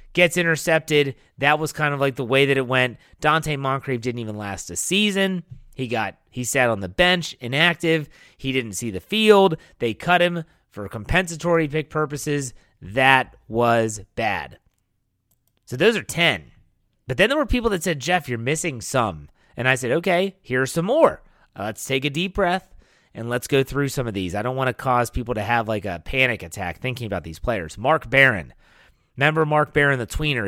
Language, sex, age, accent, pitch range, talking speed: English, male, 30-49, American, 115-165 Hz, 195 wpm